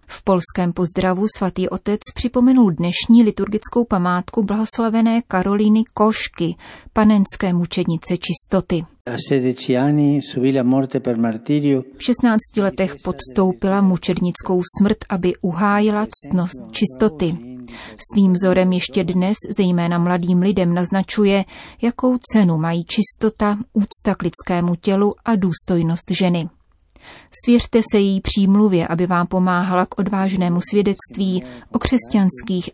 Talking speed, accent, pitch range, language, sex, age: 105 wpm, native, 175-210 Hz, Czech, female, 30-49